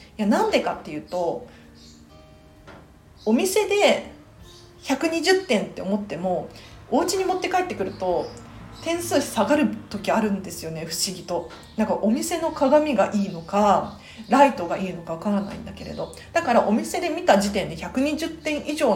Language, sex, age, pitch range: Japanese, female, 40-59, 170-275 Hz